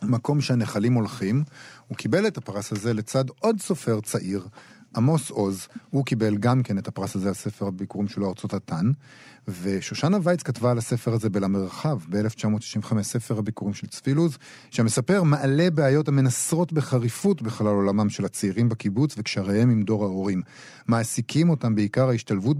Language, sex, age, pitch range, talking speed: Hebrew, male, 40-59, 110-135 Hz, 150 wpm